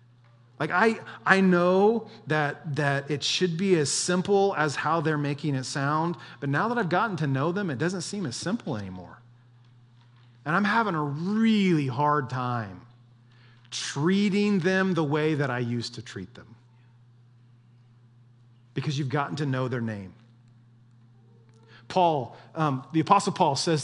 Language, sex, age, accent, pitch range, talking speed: English, male, 40-59, American, 120-175 Hz, 155 wpm